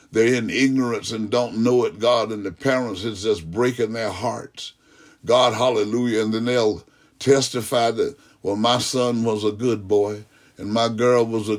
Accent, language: American, English